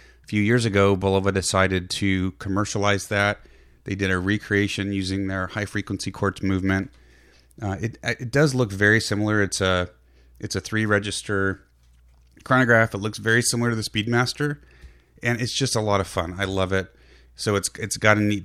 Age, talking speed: 30-49, 170 wpm